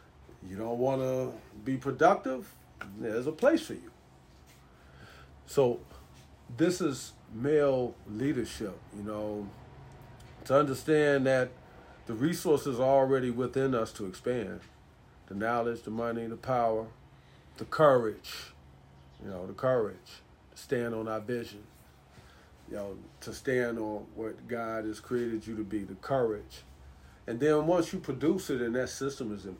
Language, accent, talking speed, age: English, American, 145 wpm, 40-59